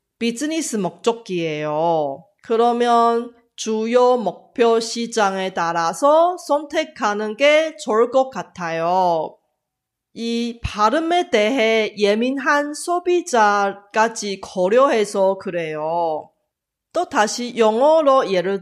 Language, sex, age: Korean, female, 30-49